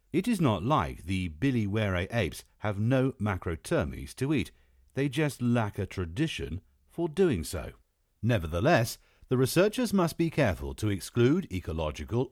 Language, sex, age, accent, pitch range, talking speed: English, male, 50-69, British, 85-130 Hz, 140 wpm